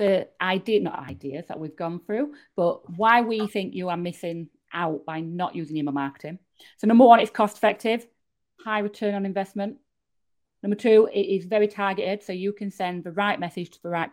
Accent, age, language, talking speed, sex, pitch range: British, 30-49, English, 200 wpm, female, 160-210 Hz